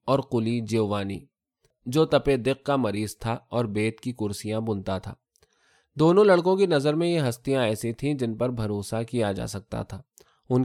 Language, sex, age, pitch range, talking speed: Urdu, male, 20-39, 105-135 Hz, 180 wpm